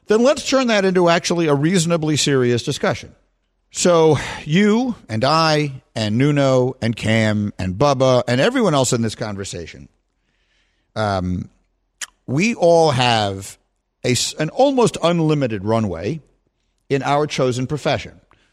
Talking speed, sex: 125 wpm, male